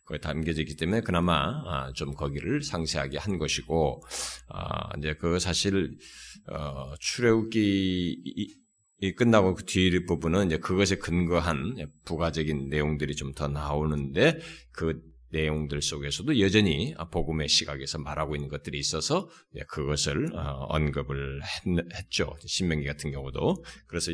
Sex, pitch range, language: male, 75-90 Hz, Korean